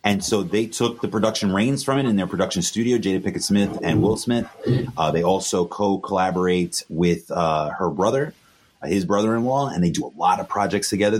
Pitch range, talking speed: 90-135 Hz, 200 wpm